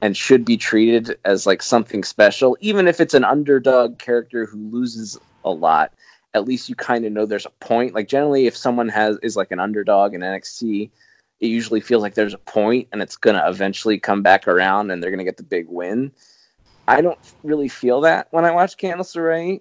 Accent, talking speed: American, 215 wpm